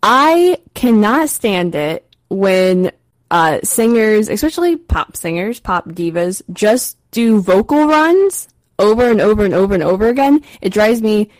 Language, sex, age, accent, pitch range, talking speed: English, female, 10-29, American, 175-230 Hz, 140 wpm